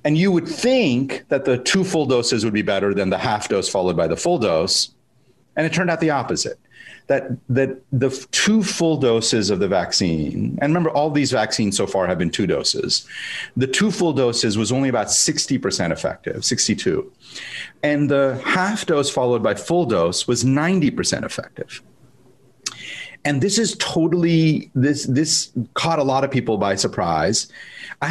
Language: English